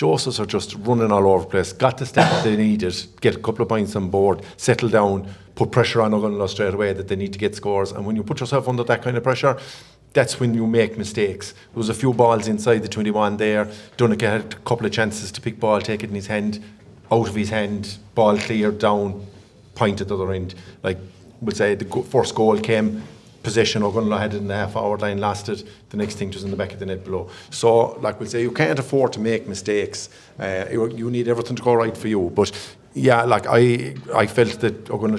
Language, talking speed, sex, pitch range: English, 235 wpm, male, 100-115 Hz